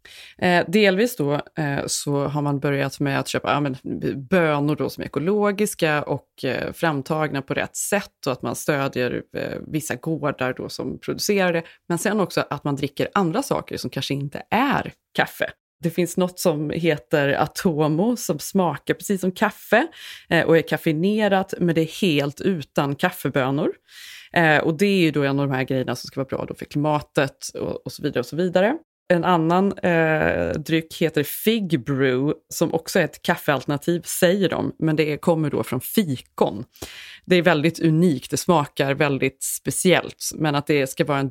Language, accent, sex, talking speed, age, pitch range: English, Swedish, female, 175 wpm, 30-49, 145-180 Hz